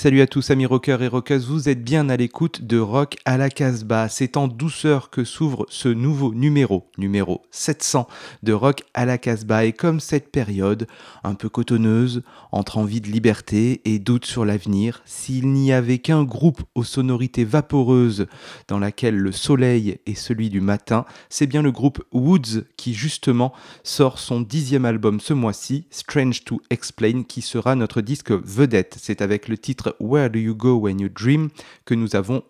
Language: French